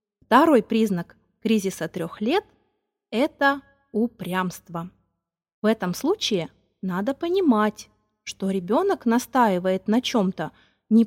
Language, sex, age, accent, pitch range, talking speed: Russian, female, 20-39, native, 185-260 Hz, 105 wpm